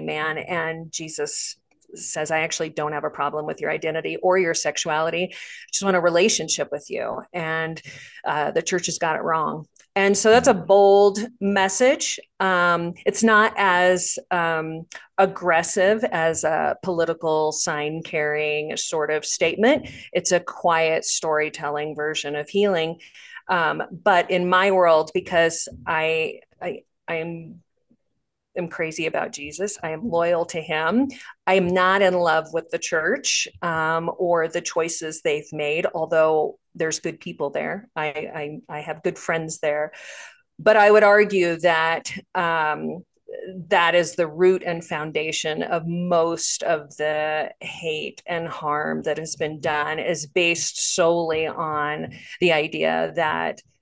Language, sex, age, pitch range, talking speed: English, female, 40-59, 155-185 Hz, 150 wpm